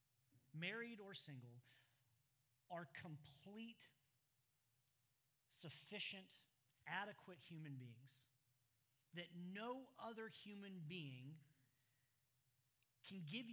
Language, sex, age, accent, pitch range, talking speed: English, male, 40-59, American, 130-175 Hz, 70 wpm